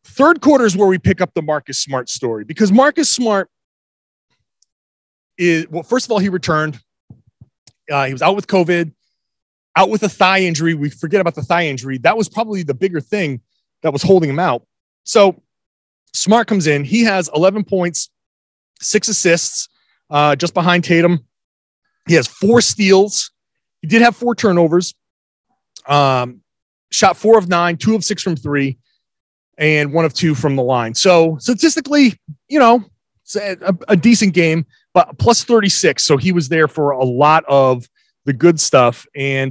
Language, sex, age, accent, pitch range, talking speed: English, male, 30-49, American, 140-195 Hz, 170 wpm